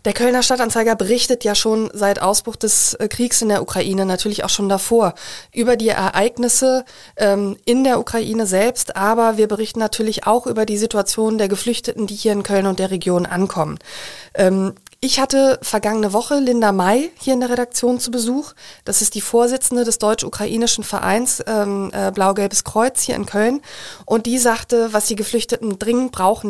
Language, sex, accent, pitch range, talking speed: German, female, German, 195-235 Hz, 170 wpm